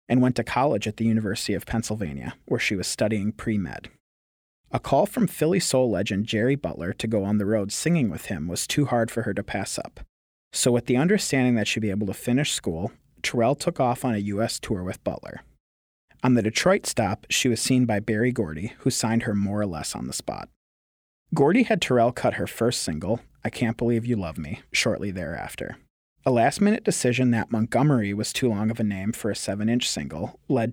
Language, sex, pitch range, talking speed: English, male, 105-125 Hz, 210 wpm